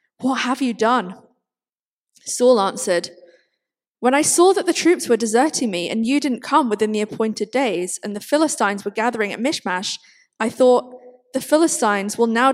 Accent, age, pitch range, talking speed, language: British, 20-39, 195-240 Hz, 170 wpm, English